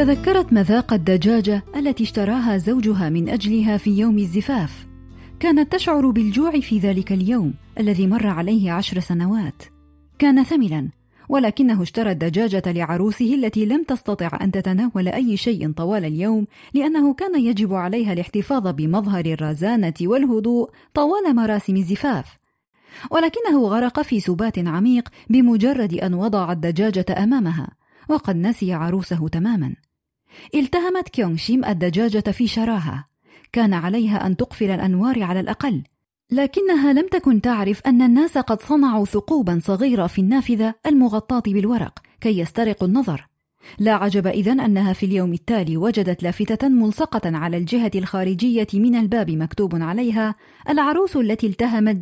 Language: Arabic